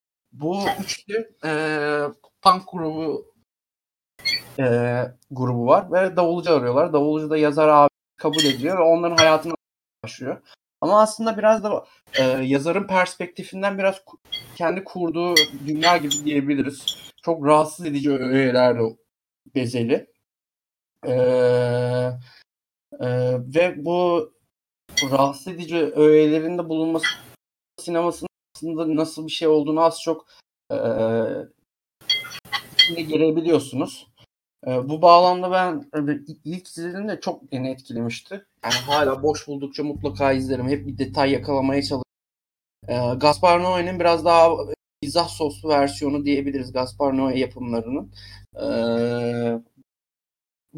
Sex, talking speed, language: male, 110 wpm, Turkish